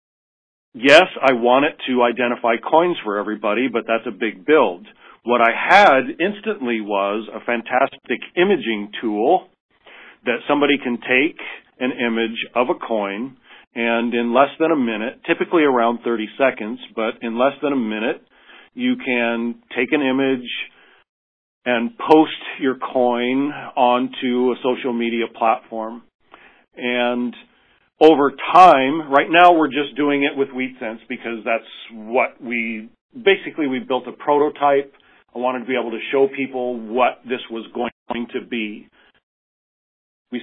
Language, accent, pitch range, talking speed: English, American, 115-145 Hz, 145 wpm